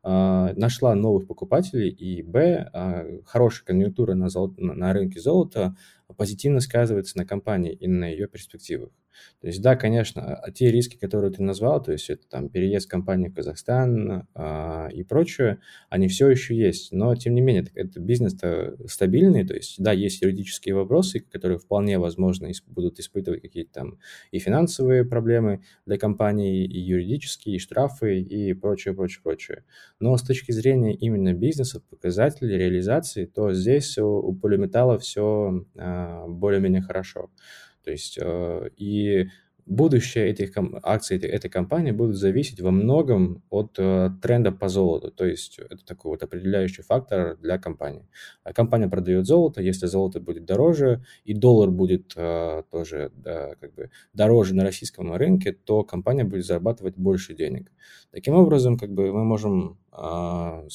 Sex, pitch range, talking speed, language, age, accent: male, 95-120 Hz, 150 wpm, Russian, 20-39, native